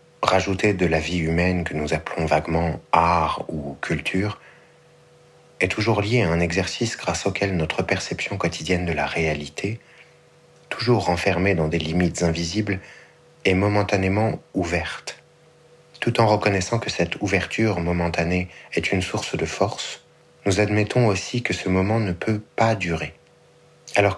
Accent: French